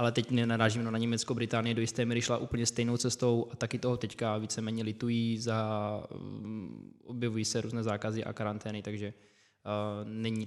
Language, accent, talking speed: Czech, native, 180 wpm